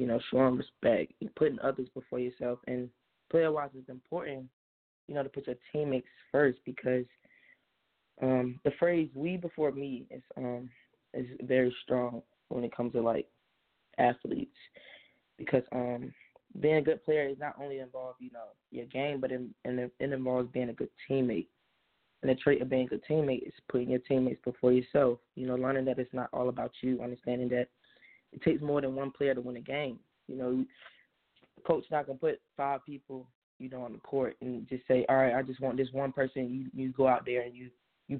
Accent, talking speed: American, 205 wpm